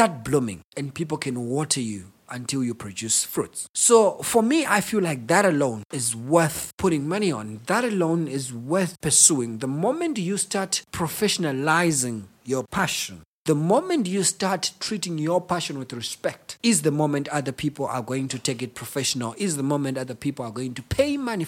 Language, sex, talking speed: English, male, 185 wpm